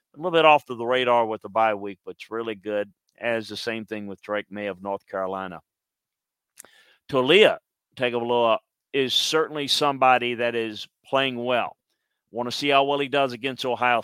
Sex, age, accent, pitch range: male, 50-69, American, 110-135 Hz